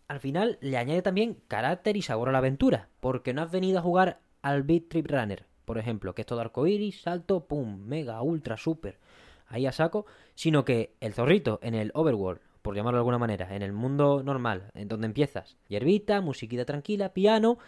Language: Spanish